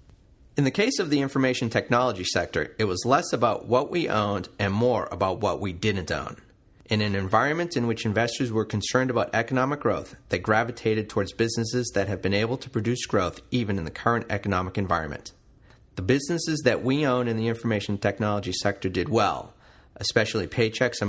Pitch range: 95-120 Hz